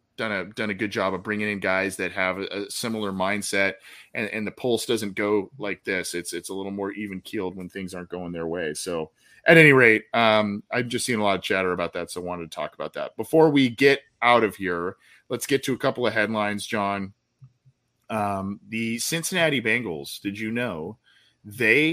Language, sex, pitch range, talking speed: English, male, 95-115 Hz, 215 wpm